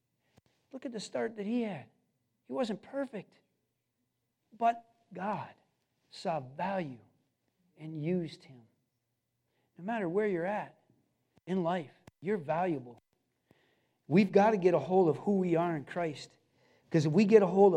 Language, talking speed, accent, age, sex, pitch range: English, 150 wpm, American, 50-69, male, 170-235 Hz